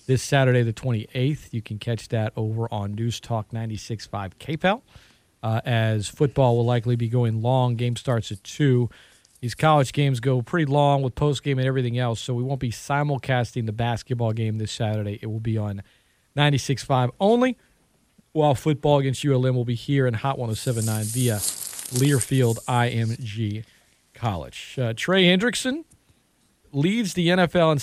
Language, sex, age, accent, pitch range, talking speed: English, male, 40-59, American, 115-150 Hz, 160 wpm